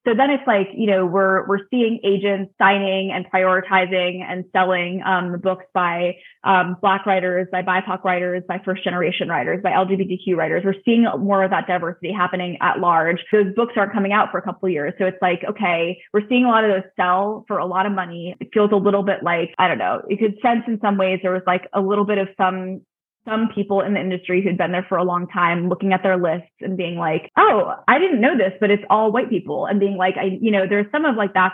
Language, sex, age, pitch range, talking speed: English, female, 20-39, 185-210 Hz, 245 wpm